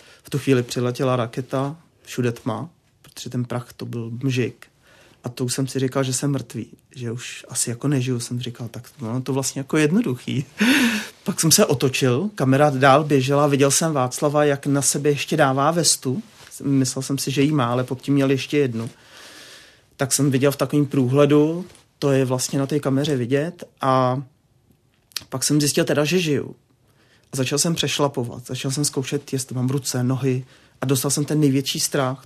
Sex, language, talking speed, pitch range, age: male, Czech, 185 wpm, 130-145 Hz, 30-49